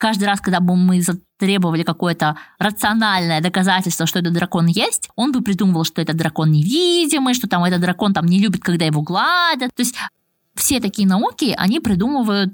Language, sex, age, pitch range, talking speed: Russian, female, 20-39, 190-250 Hz, 175 wpm